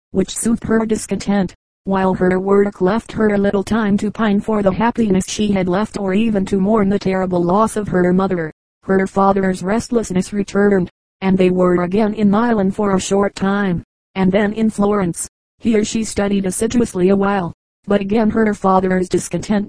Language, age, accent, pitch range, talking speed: English, 30-49, American, 185-210 Hz, 180 wpm